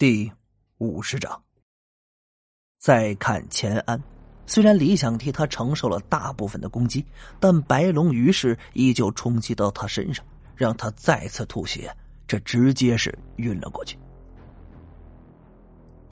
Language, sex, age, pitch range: Chinese, male, 30-49, 110-150 Hz